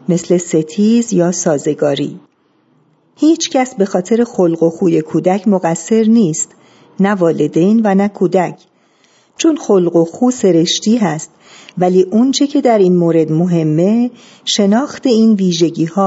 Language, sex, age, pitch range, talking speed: Persian, female, 50-69, 170-220 Hz, 130 wpm